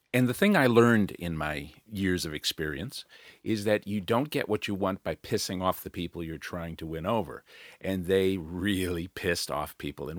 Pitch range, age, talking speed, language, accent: 90-115 Hz, 50-69, 205 wpm, English, American